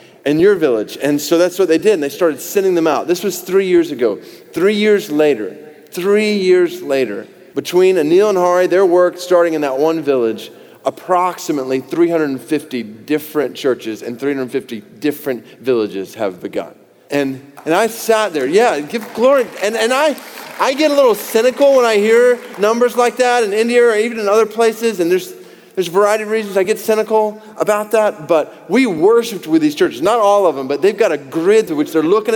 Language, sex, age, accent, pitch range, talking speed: English, male, 30-49, American, 155-225 Hz, 200 wpm